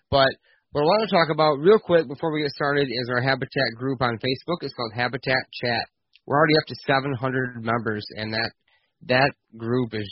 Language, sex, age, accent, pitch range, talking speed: English, male, 30-49, American, 115-140 Hz, 200 wpm